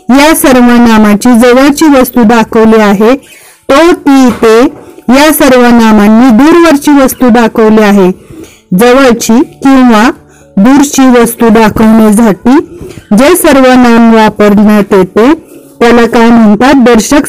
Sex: female